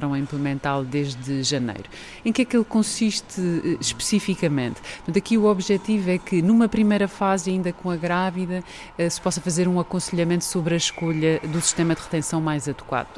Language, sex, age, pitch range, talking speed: Portuguese, female, 30-49, 155-195 Hz, 175 wpm